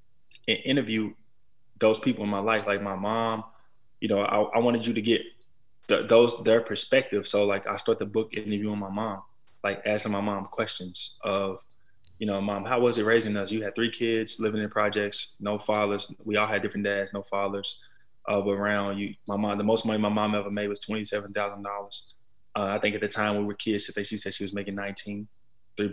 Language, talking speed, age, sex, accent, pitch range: English, 220 wpm, 20-39, male, American, 100-110 Hz